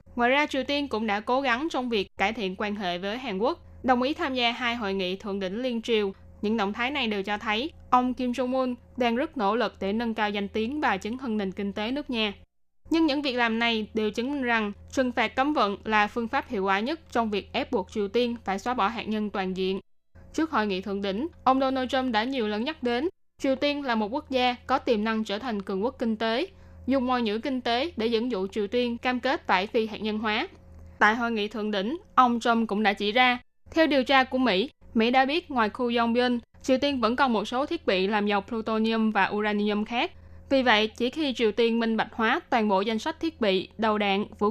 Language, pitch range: Vietnamese, 210-255 Hz